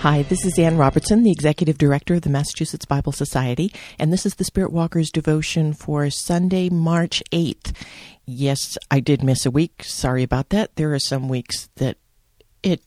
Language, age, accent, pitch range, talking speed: English, 50-69, American, 135-175 Hz, 180 wpm